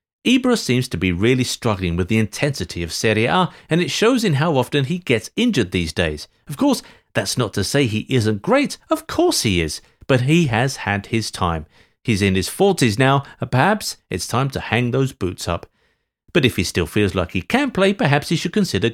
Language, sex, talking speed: English, male, 220 wpm